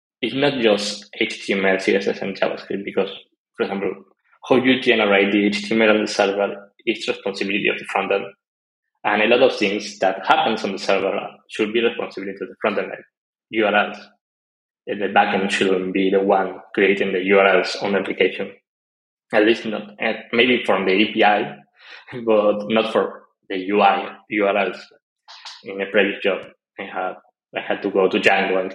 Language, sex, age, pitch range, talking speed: English, male, 20-39, 95-110 Hz, 175 wpm